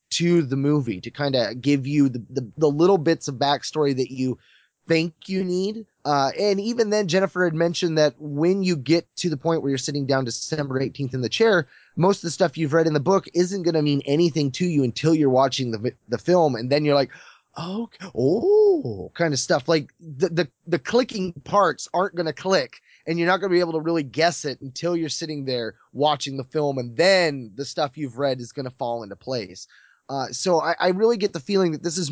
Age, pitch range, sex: 20-39, 130-170 Hz, male